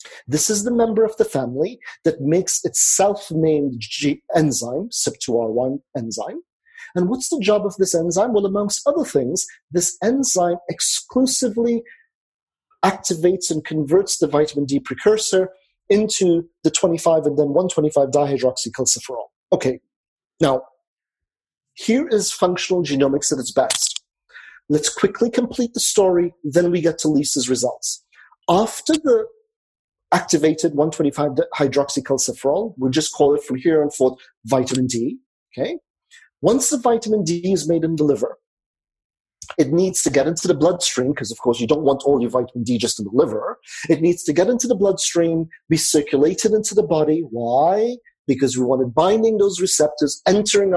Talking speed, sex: 150 wpm, male